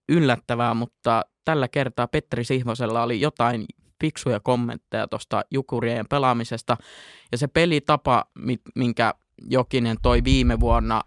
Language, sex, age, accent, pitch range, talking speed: Finnish, male, 20-39, native, 115-125 Hz, 115 wpm